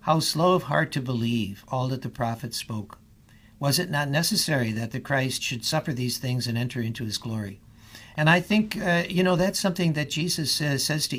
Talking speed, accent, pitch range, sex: 215 wpm, American, 115-145 Hz, male